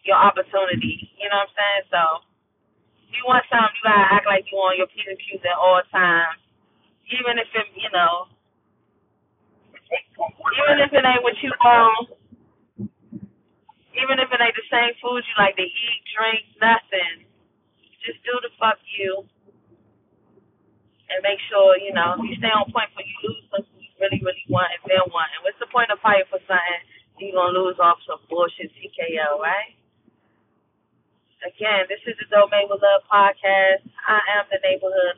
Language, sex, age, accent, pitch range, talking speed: English, female, 20-39, American, 190-235 Hz, 170 wpm